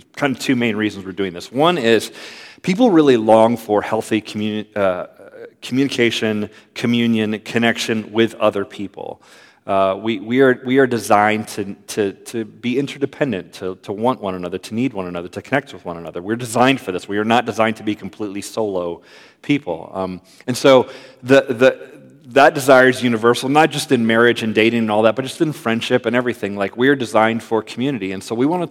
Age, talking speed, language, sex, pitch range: 40-59, 200 wpm, English, male, 100-125 Hz